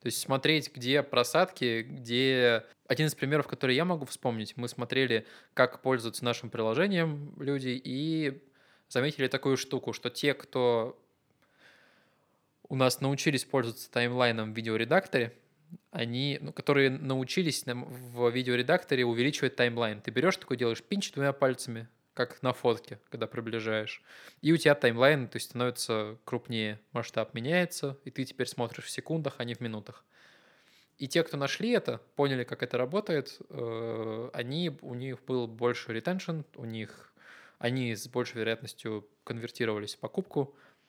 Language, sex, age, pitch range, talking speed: Russian, male, 20-39, 115-140 Hz, 140 wpm